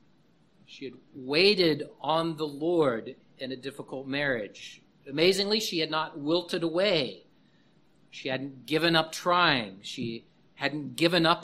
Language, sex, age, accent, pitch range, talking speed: English, male, 50-69, American, 155-205 Hz, 130 wpm